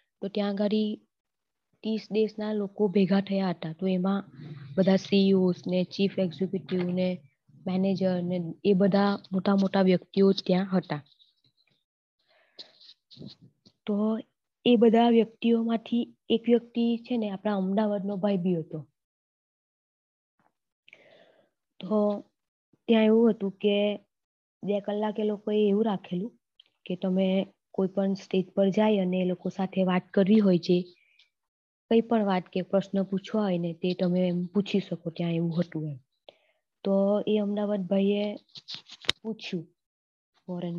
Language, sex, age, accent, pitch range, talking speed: English, female, 20-39, Indian, 180-210 Hz, 90 wpm